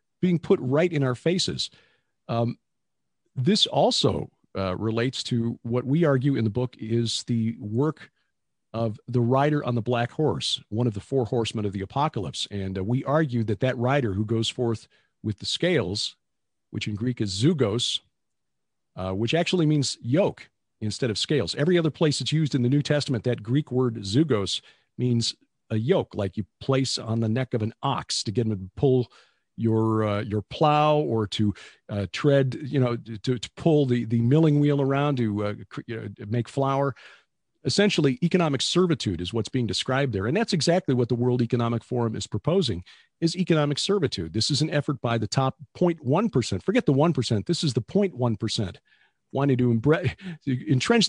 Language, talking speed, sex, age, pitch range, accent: English, 185 wpm, male, 50-69, 110-145 Hz, American